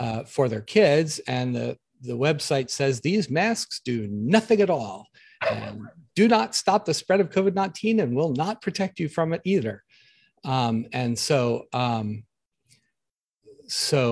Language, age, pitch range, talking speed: English, 50-69, 115-150 Hz, 155 wpm